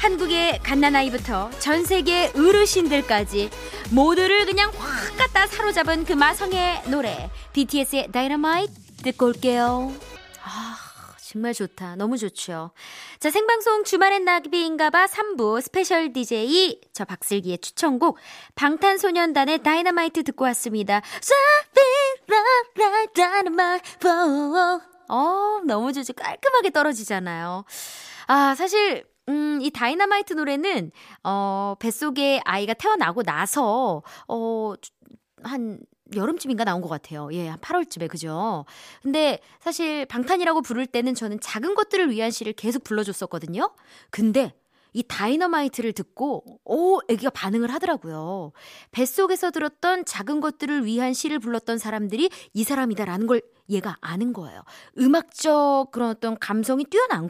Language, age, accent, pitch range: Korean, 20-39, native, 225-350 Hz